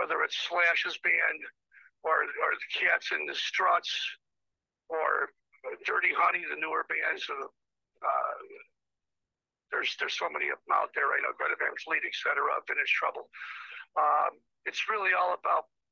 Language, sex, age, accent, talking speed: English, male, 60-79, American, 150 wpm